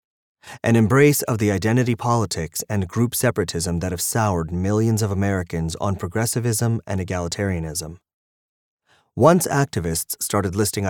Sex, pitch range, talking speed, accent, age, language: male, 90-120 Hz, 125 wpm, American, 30-49, English